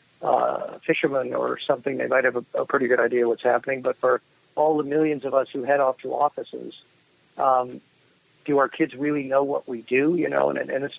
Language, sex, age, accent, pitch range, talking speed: English, male, 50-69, American, 125-140 Hz, 215 wpm